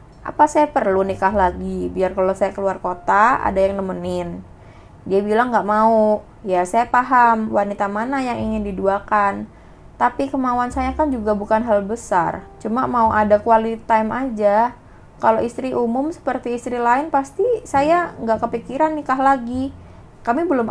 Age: 20-39